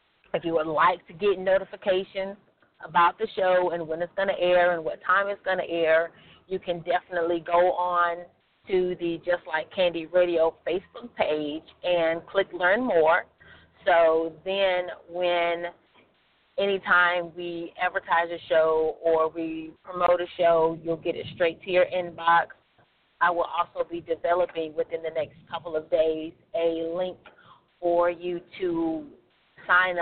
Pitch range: 165-180 Hz